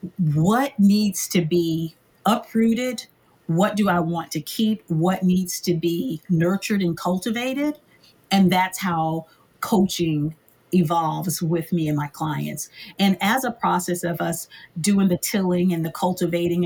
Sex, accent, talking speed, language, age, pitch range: female, American, 145 wpm, English, 40-59, 165-195 Hz